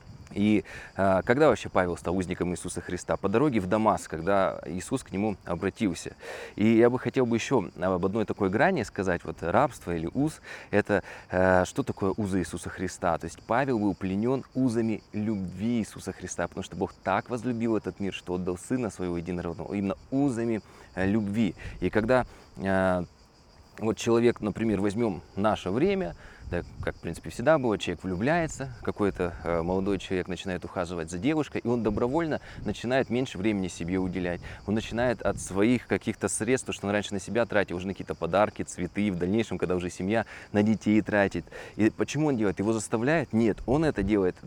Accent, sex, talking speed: native, male, 180 wpm